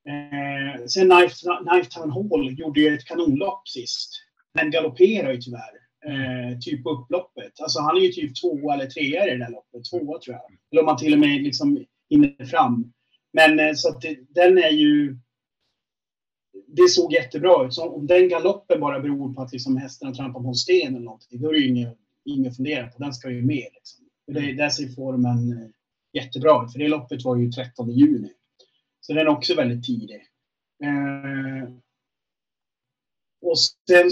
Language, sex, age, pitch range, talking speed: Swedish, male, 30-49, 125-175 Hz, 180 wpm